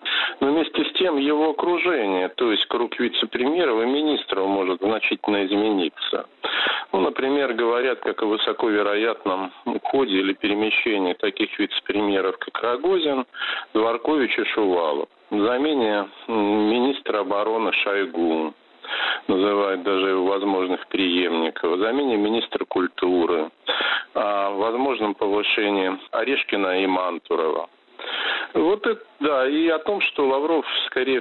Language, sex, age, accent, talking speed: Russian, male, 50-69, native, 110 wpm